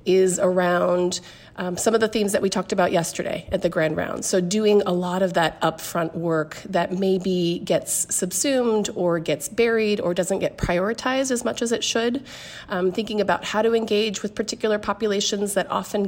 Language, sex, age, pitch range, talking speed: English, female, 30-49, 170-210 Hz, 190 wpm